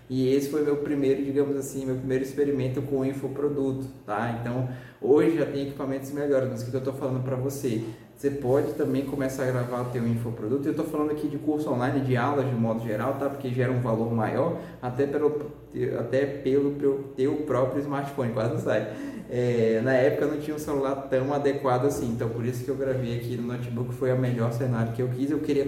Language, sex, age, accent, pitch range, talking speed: Portuguese, male, 20-39, Brazilian, 125-150 Hz, 220 wpm